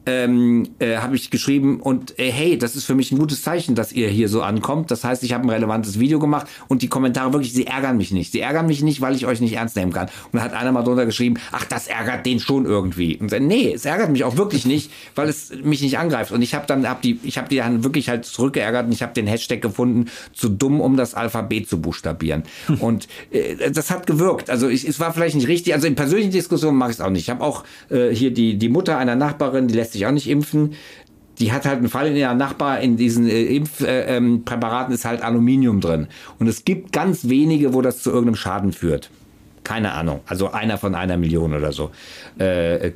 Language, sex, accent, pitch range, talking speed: German, male, German, 110-135 Hz, 240 wpm